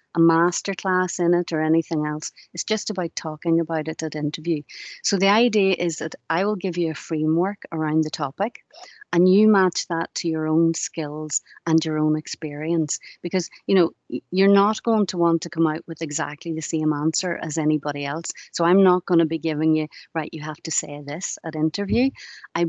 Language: English